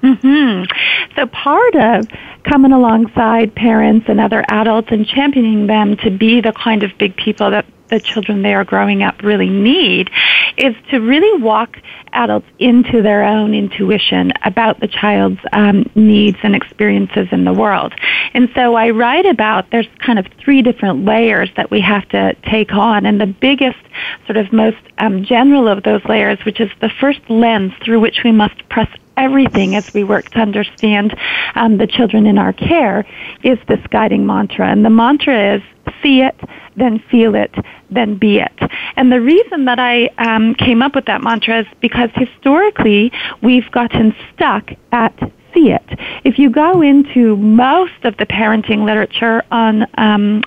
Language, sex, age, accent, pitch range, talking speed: English, female, 30-49, American, 215-245 Hz, 175 wpm